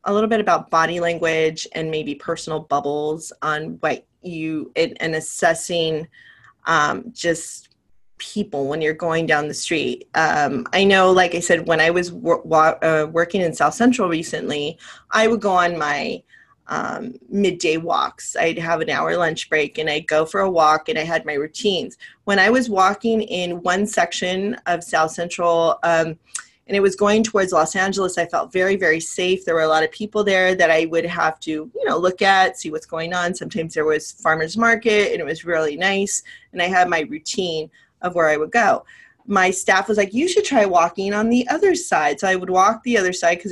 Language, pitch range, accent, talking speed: English, 160-200 Hz, American, 205 wpm